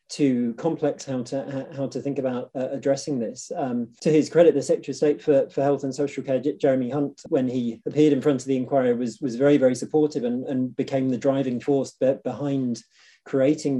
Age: 30-49